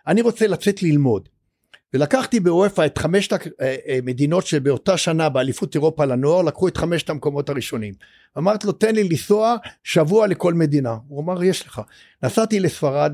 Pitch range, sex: 135-190 Hz, male